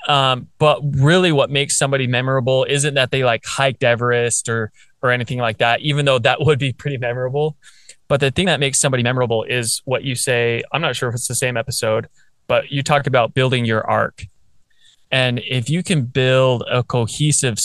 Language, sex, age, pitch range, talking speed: English, male, 20-39, 120-145 Hz, 195 wpm